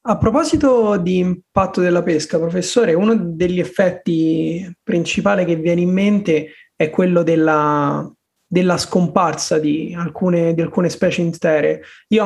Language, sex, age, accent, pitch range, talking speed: Italian, male, 20-39, native, 165-190 Hz, 125 wpm